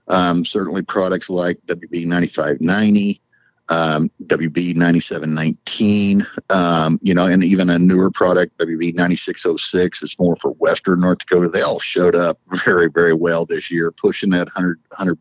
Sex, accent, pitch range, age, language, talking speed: male, American, 85-95 Hz, 50-69, English, 140 wpm